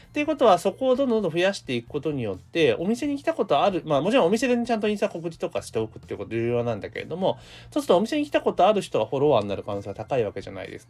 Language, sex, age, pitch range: Japanese, male, 30-49, 130-195 Hz